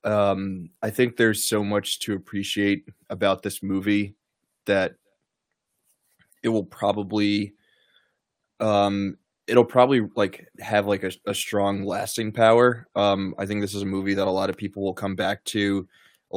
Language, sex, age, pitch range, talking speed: English, male, 20-39, 95-105 Hz, 160 wpm